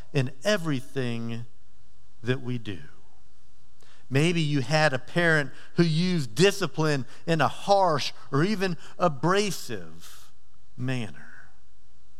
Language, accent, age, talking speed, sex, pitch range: English, American, 50-69, 100 wpm, male, 120-175 Hz